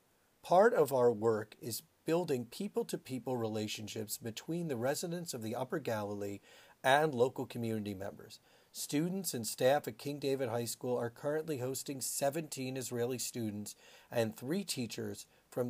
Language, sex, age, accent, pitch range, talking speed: English, male, 40-59, American, 110-140 Hz, 150 wpm